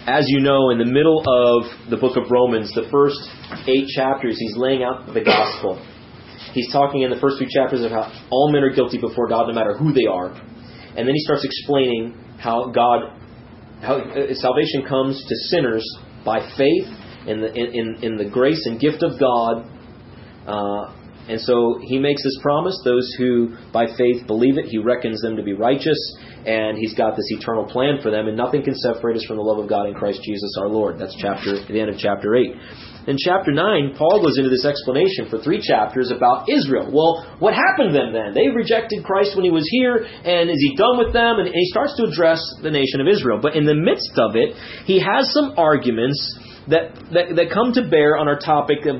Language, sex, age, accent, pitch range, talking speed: English, male, 30-49, American, 120-150 Hz, 215 wpm